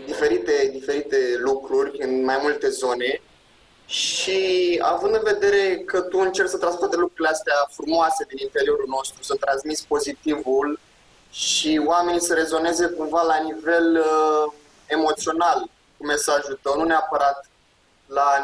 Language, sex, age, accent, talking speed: English, male, 20-39, Romanian, 130 wpm